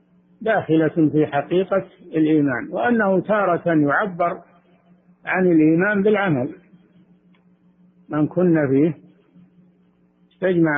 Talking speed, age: 80 wpm, 60-79